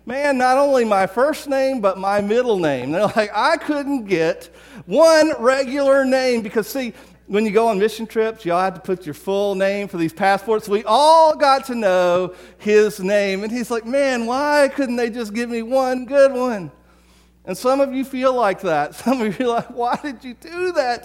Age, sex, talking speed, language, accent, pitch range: 50-69, male, 210 wpm, English, American, 180-235 Hz